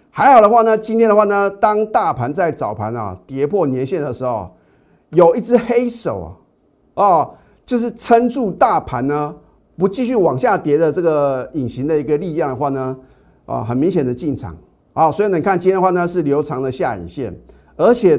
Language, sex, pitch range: Chinese, male, 125-185 Hz